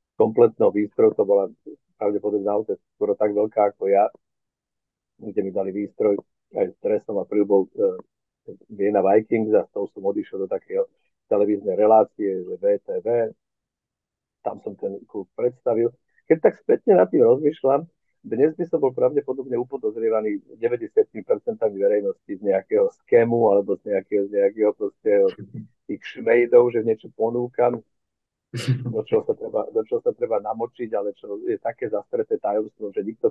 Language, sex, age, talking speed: Slovak, male, 50-69, 150 wpm